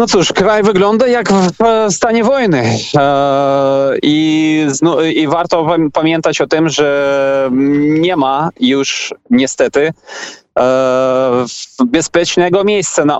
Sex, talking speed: male, 100 wpm